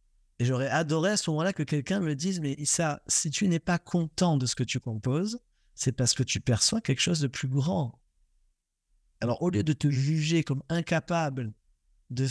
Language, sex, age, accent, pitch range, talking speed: French, male, 50-69, French, 125-160 Hz, 210 wpm